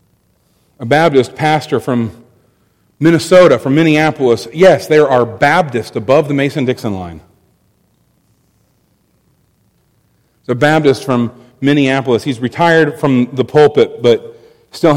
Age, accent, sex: 40-59, American, male